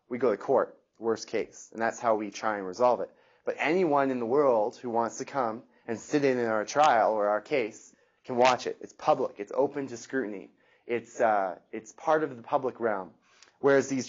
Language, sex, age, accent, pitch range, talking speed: English, male, 20-39, American, 115-145 Hz, 215 wpm